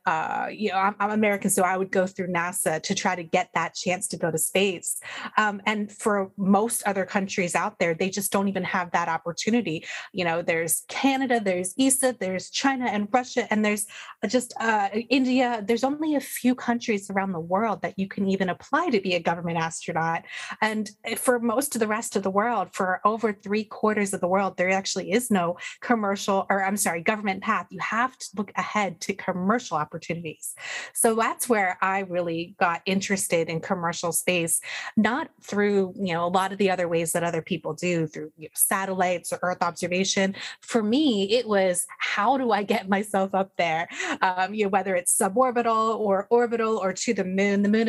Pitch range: 180-220 Hz